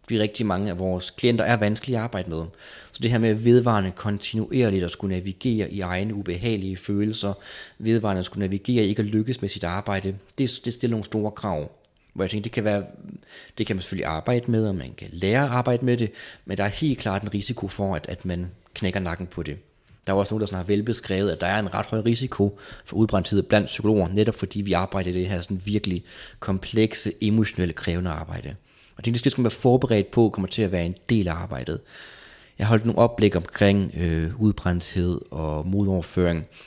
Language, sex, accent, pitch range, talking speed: Danish, male, native, 95-115 Hz, 210 wpm